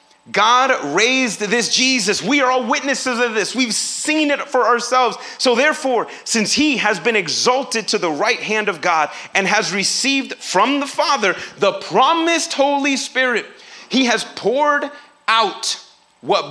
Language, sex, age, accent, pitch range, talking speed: English, male, 30-49, American, 215-280 Hz, 155 wpm